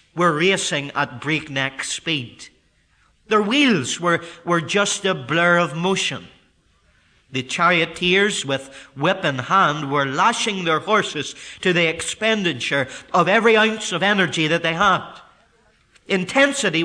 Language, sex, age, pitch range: English, male, 50-69, 150-215 Hz